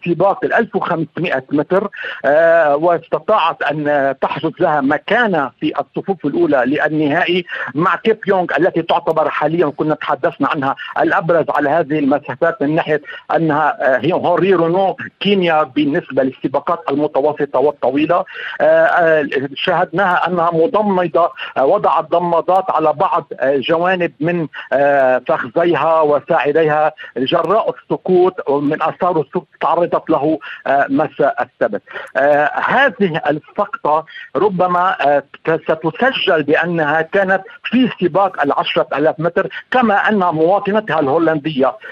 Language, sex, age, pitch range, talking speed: Arabic, male, 50-69, 155-195 Hz, 105 wpm